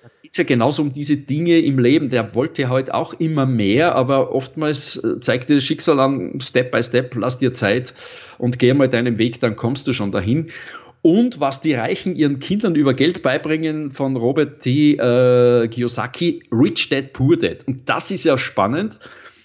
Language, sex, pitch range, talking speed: German, male, 120-150 Hz, 180 wpm